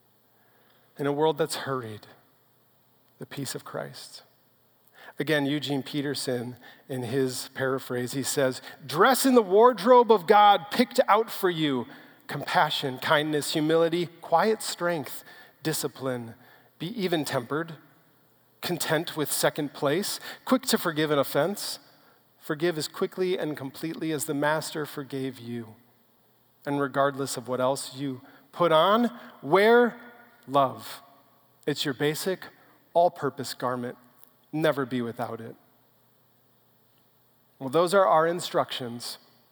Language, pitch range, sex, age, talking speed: English, 130-175 Hz, male, 40-59, 120 wpm